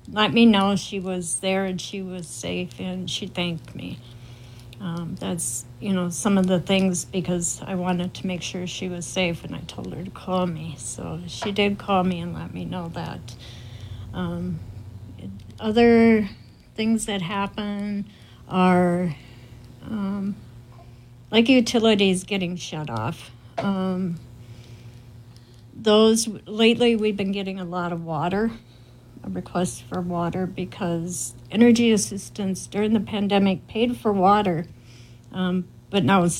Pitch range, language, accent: 120-195 Hz, English, American